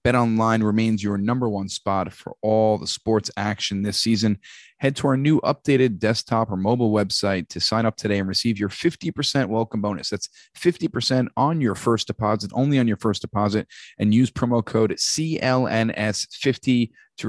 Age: 30-49